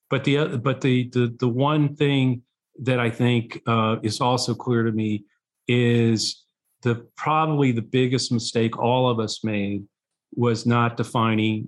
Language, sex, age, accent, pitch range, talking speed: English, male, 50-69, American, 115-130 Hz, 155 wpm